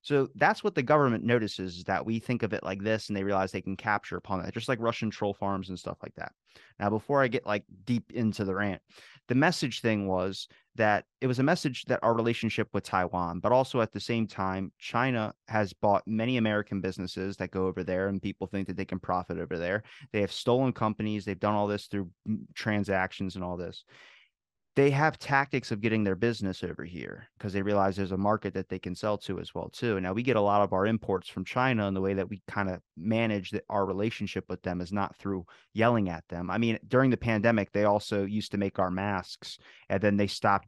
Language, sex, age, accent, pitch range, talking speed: English, male, 30-49, American, 95-115 Hz, 235 wpm